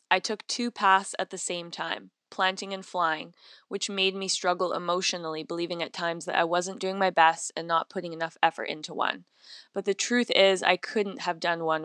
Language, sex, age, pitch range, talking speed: English, female, 10-29, 165-195 Hz, 210 wpm